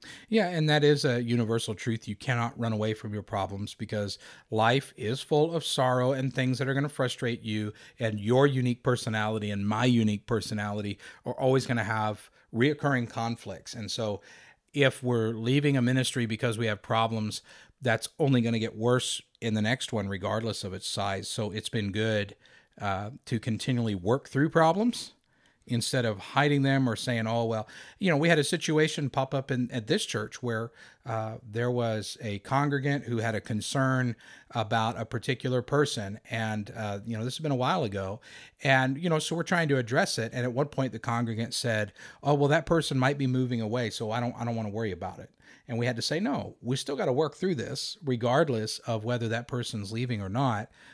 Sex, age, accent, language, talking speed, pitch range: male, 50-69, American, English, 210 wpm, 110-135 Hz